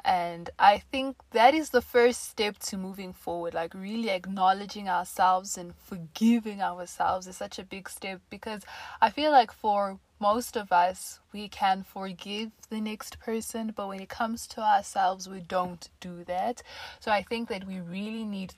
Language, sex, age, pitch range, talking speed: English, female, 20-39, 185-225 Hz, 175 wpm